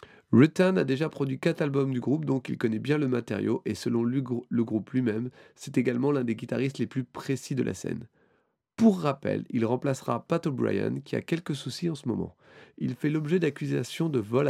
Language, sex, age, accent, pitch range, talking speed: French, male, 30-49, French, 115-150 Hz, 205 wpm